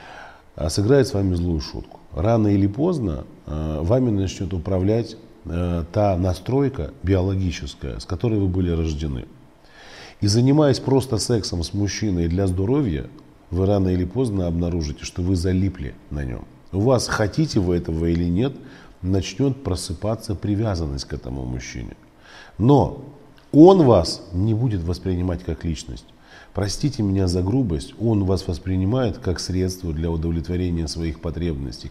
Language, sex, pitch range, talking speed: Russian, male, 85-110 Hz, 135 wpm